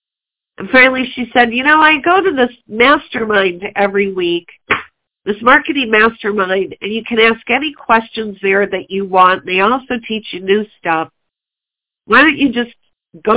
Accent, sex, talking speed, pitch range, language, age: American, female, 165 wpm, 185-240 Hz, English, 50-69